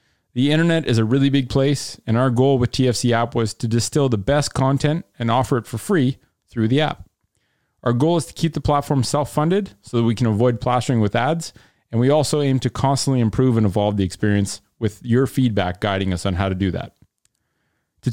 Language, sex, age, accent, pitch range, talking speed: English, male, 30-49, American, 115-140 Hz, 215 wpm